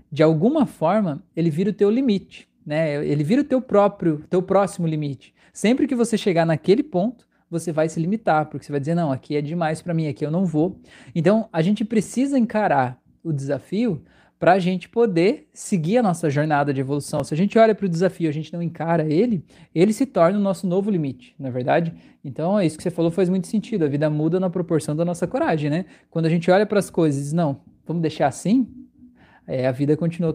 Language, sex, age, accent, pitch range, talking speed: Portuguese, male, 20-39, Brazilian, 155-195 Hz, 220 wpm